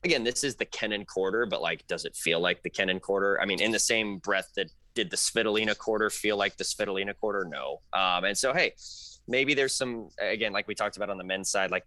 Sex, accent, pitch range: male, American, 95-115 Hz